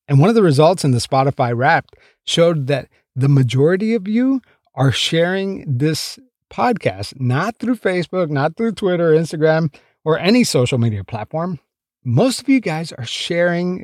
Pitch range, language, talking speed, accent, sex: 130-190 Hz, English, 160 wpm, American, male